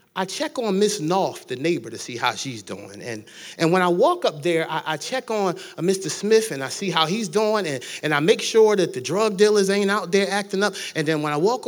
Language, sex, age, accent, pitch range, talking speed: English, male, 30-49, American, 160-215 Hz, 260 wpm